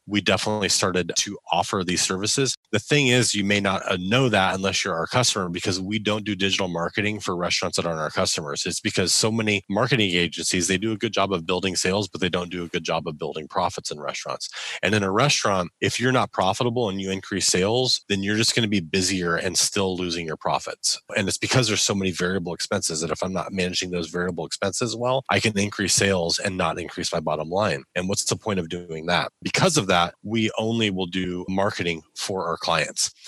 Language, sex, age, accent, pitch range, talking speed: English, male, 30-49, American, 90-110 Hz, 225 wpm